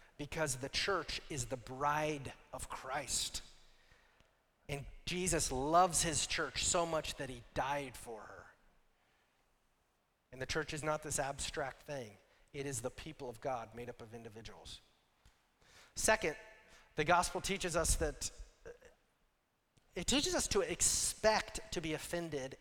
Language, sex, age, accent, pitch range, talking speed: English, male, 40-59, American, 140-205 Hz, 140 wpm